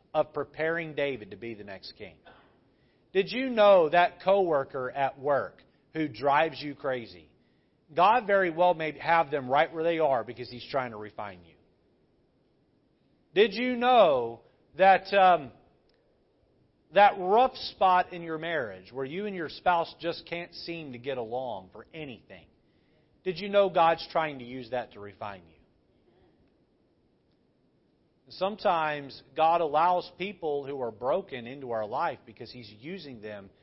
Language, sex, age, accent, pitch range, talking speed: English, male, 40-59, American, 125-170 Hz, 150 wpm